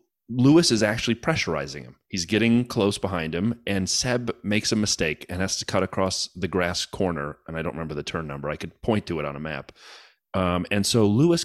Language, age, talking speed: English, 30-49, 220 wpm